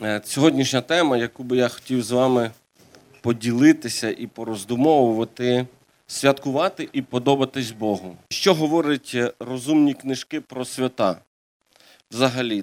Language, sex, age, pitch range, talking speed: Ukrainian, male, 40-59, 110-140 Hz, 105 wpm